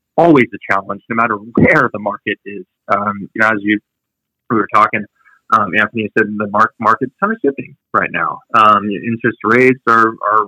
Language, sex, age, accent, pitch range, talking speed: English, male, 20-39, American, 105-125 Hz, 190 wpm